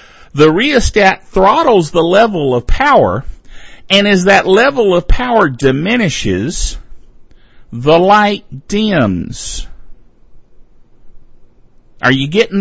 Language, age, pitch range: English, 50-69, 150-210 Hz